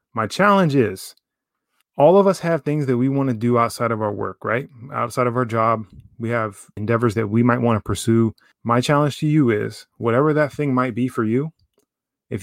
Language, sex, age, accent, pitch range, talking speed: English, male, 20-39, American, 110-135 Hz, 210 wpm